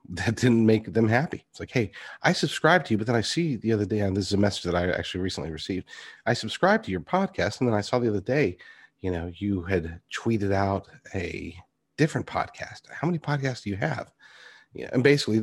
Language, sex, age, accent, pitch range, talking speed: English, male, 40-59, American, 95-115 Hz, 230 wpm